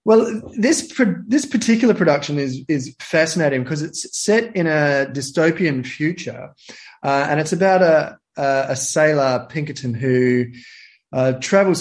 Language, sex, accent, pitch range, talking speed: English, male, Australian, 130-160 Hz, 135 wpm